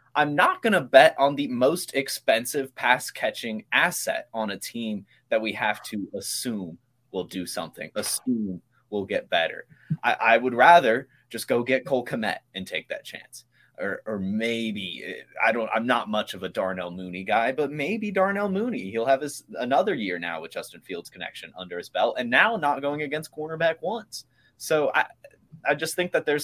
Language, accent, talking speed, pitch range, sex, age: English, American, 190 wpm, 105-140 Hz, male, 20-39